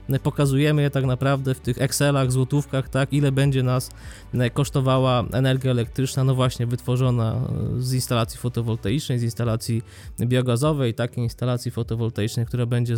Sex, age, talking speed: male, 20-39, 130 wpm